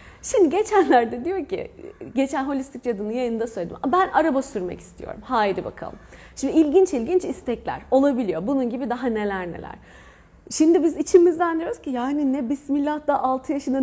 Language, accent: Turkish, native